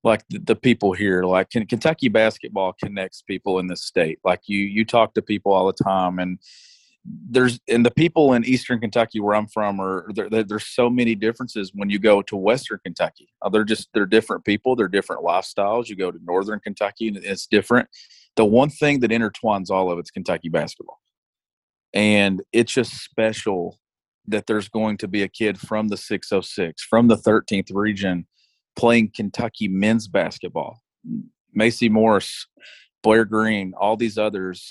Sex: male